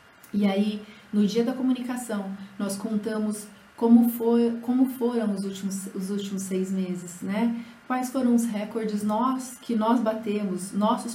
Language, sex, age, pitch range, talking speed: Portuguese, female, 30-49, 200-235 Hz, 135 wpm